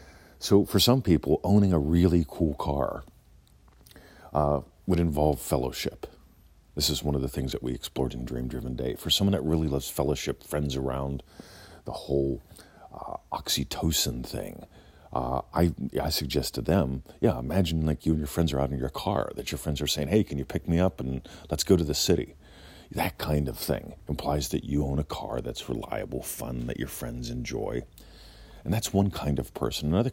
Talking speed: 195 wpm